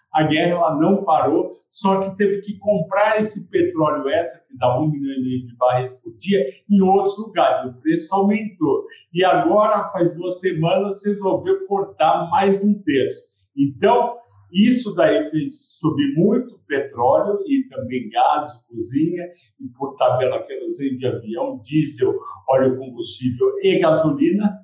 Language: Portuguese